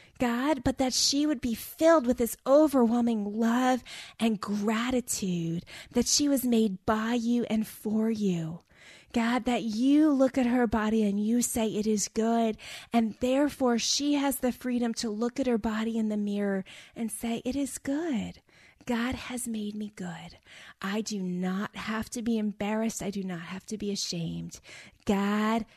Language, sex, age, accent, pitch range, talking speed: English, female, 20-39, American, 185-235 Hz, 170 wpm